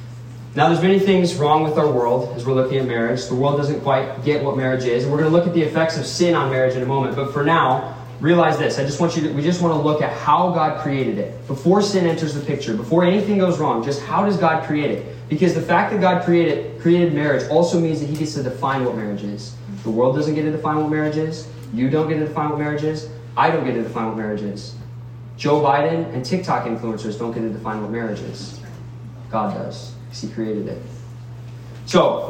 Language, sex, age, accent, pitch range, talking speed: English, male, 20-39, American, 120-155 Hz, 245 wpm